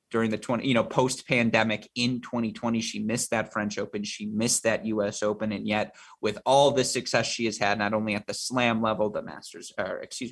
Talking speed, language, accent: 220 wpm, English, American